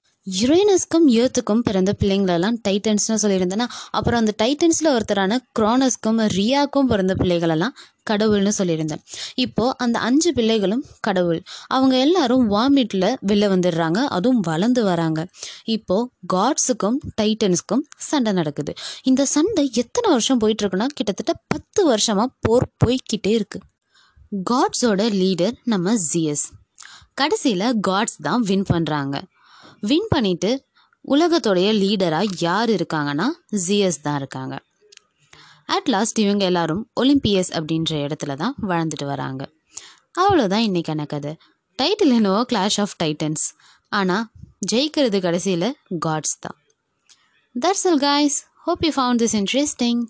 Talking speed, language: 110 wpm, Tamil